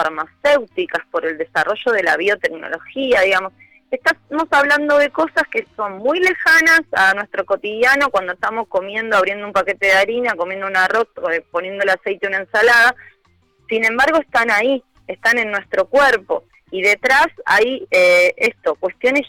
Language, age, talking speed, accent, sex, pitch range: Spanish, 20-39, 155 wpm, Argentinian, female, 190-255 Hz